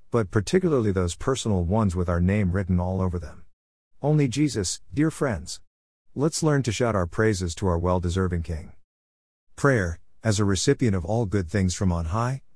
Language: English